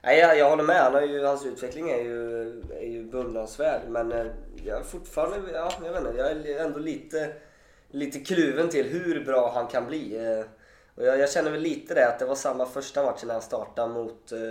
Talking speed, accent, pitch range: 205 wpm, Swedish, 115-150 Hz